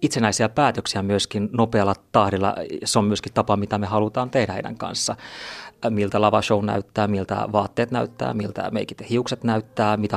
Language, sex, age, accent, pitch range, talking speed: Finnish, male, 30-49, native, 100-115 Hz, 155 wpm